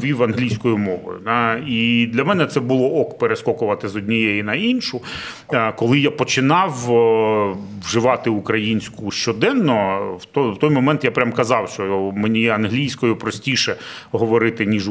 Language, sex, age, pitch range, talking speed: Ukrainian, male, 30-49, 105-125 Hz, 130 wpm